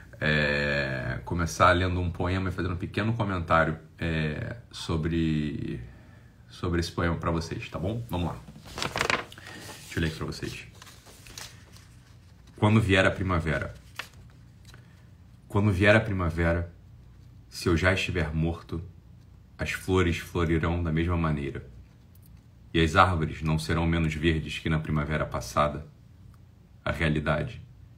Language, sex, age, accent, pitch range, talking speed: Portuguese, male, 40-59, Brazilian, 80-100 Hz, 125 wpm